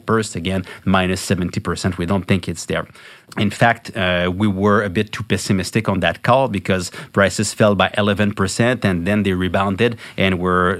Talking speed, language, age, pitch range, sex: 180 wpm, English, 30-49, 90-110 Hz, male